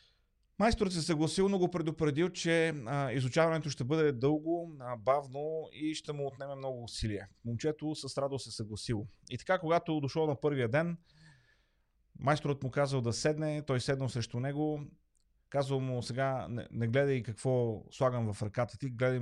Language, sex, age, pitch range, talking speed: Bulgarian, male, 30-49, 115-145 Hz, 165 wpm